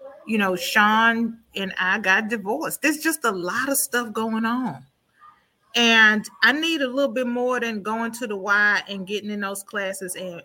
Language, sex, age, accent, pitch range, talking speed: English, female, 30-49, American, 200-270 Hz, 190 wpm